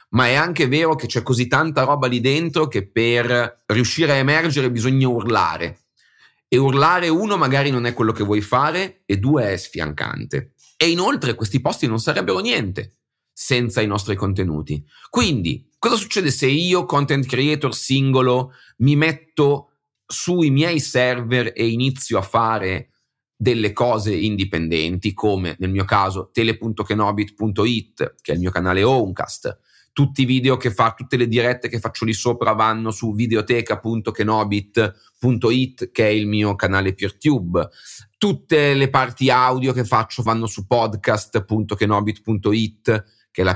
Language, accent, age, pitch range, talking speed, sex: Italian, native, 30-49, 105-135 Hz, 145 wpm, male